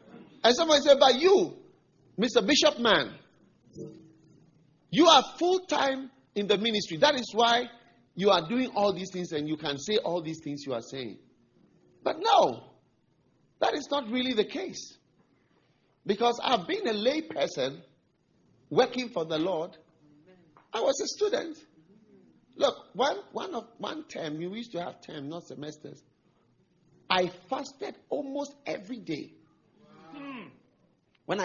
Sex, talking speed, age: male, 145 wpm, 50-69